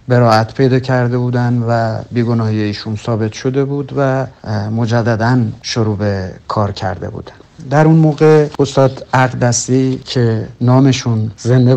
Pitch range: 110-140 Hz